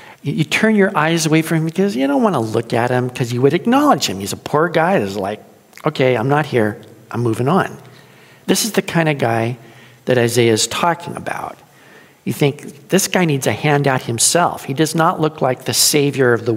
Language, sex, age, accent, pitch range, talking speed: English, male, 50-69, American, 125-190 Hz, 220 wpm